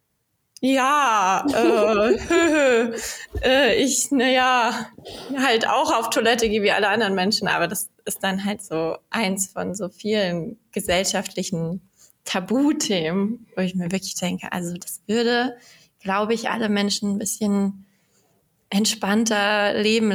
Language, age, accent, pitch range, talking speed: English, 20-39, German, 185-215 Hz, 125 wpm